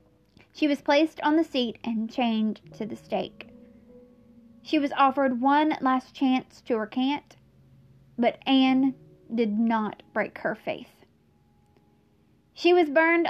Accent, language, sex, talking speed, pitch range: American, English, female, 130 wpm, 240-305 Hz